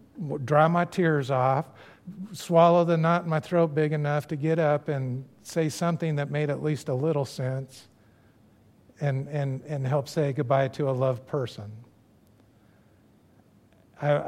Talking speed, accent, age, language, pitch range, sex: 150 wpm, American, 50-69, English, 125-175 Hz, male